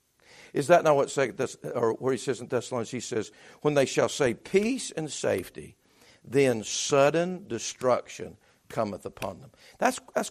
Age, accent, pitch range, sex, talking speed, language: 50-69, American, 130-165 Hz, male, 155 wpm, English